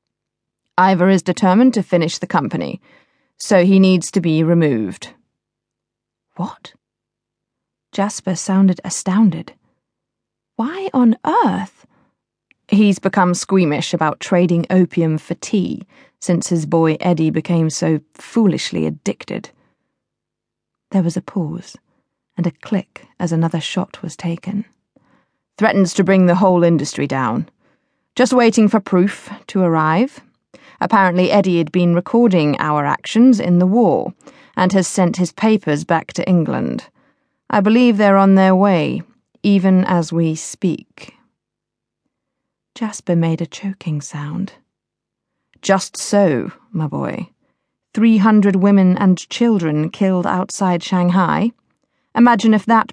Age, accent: 30-49, British